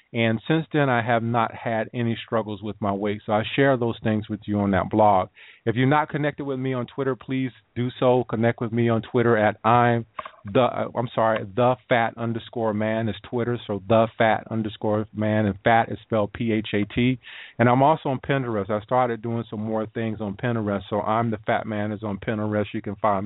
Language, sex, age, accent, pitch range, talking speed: English, male, 40-59, American, 105-115 Hz, 215 wpm